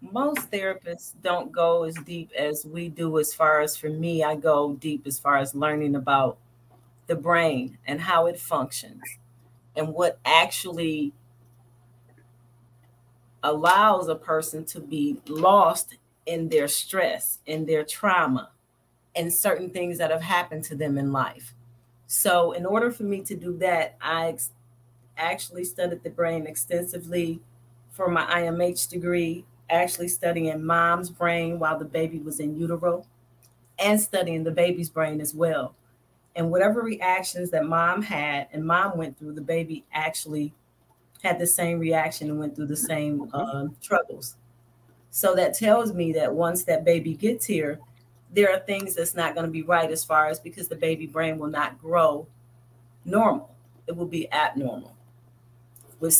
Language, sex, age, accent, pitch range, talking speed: English, female, 40-59, American, 135-170 Hz, 155 wpm